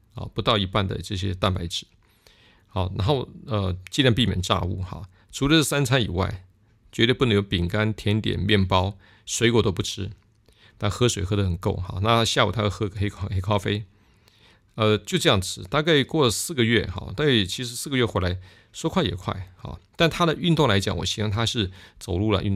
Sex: male